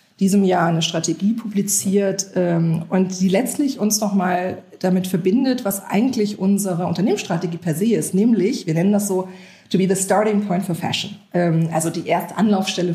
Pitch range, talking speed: 170-200 Hz, 170 wpm